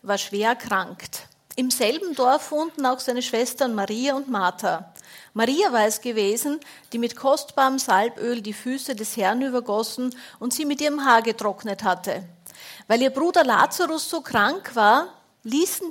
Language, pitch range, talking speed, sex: German, 220-275 Hz, 155 wpm, female